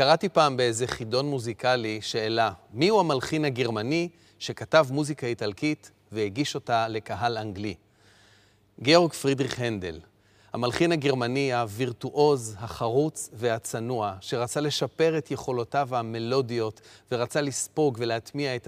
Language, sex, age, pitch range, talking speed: Hebrew, male, 30-49, 110-140 Hz, 110 wpm